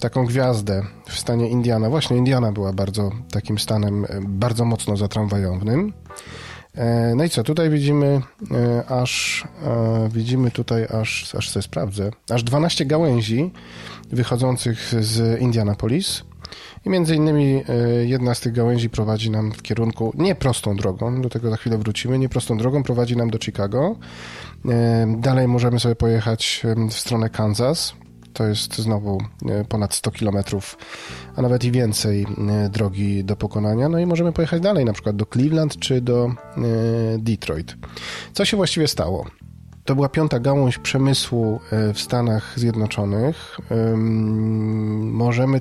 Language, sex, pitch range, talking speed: Polish, male, 105-125 Hz, 135 wpm